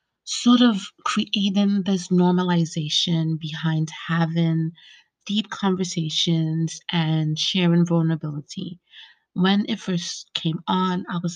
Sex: female